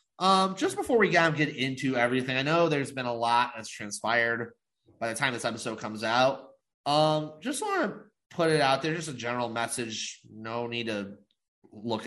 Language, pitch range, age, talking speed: English, 115-150 Hz, 20-39, 190 wpm